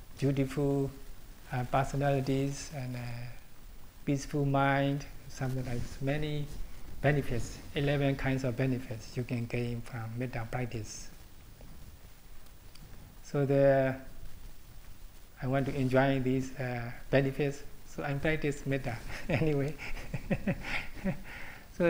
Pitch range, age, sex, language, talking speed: 120-145 Hz, 60-79, male, English, 100 wpm